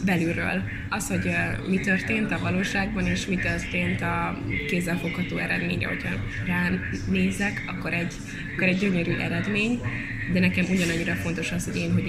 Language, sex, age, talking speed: Hungarian, female, 20-39, 155 wpm